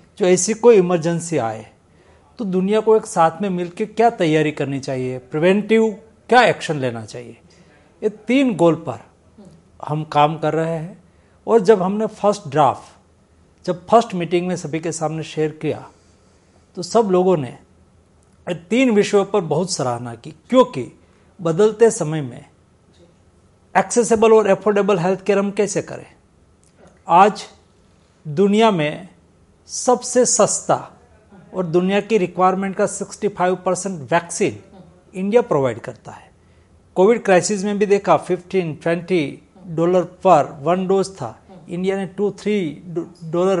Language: Hindi